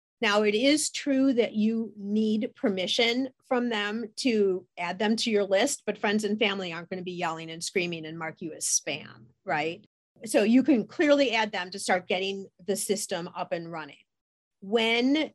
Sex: female